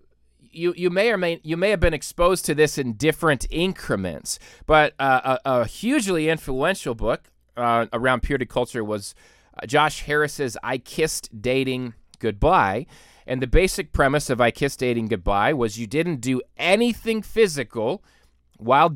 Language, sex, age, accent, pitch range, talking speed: English, male, 30-49, American, 115-160 Hz, 155 wpm